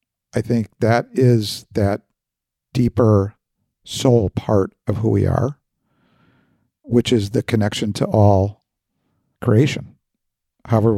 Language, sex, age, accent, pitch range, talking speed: English, male, 50-69, American, 105-135 Hz, 110 wpm